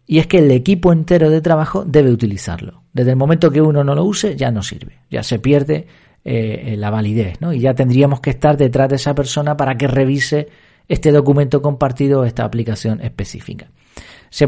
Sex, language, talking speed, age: male, Spanish, 195 wpm, 40-59